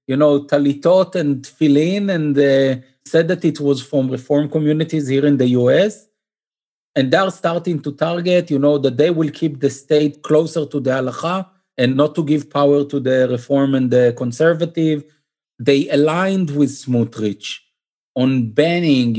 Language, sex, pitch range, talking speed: English, male, 135-175 Hz, 165 wpm